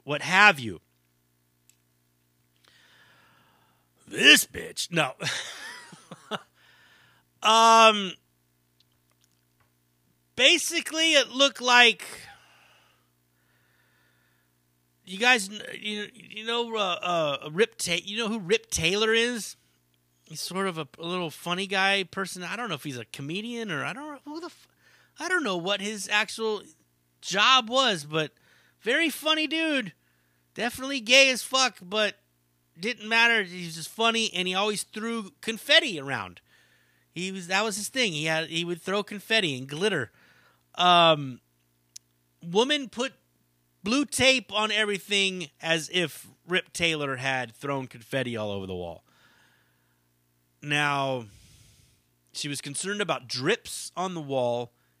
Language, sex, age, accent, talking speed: English, male, 30-49, American, 130 wpm